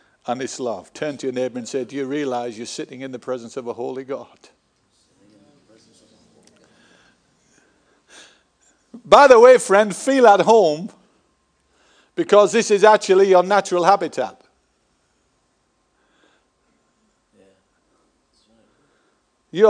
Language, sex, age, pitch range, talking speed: English, male, 60-79, 130-180 Hz, 110 wpm